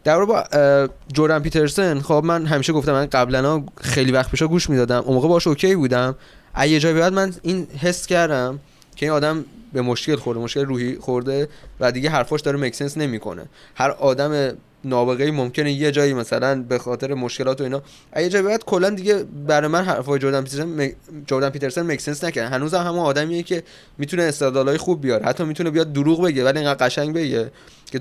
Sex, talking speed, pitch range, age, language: male, 185 wpm, 130-160 Hz, 20-39, Persian